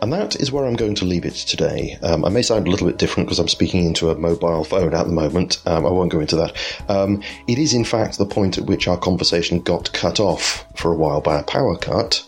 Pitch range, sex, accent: 85-105 Hz, male, British